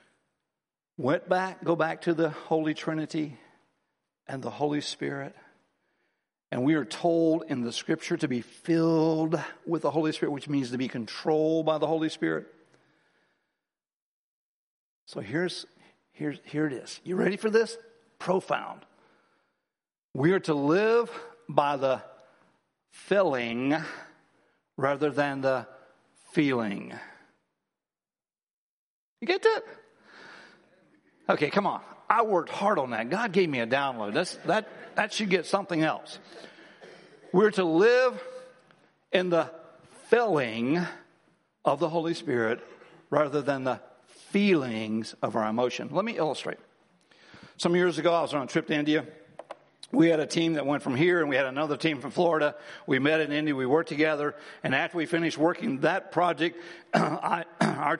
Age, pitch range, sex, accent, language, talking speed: 60-79, 145-170 Hz, male, American, English, 145 wpm